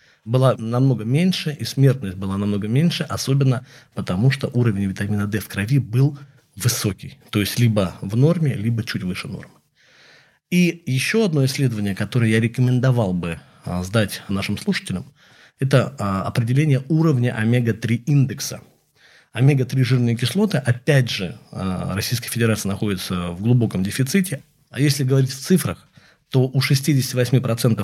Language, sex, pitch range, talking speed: Russian, male, 110-145 Hz, 130 wpm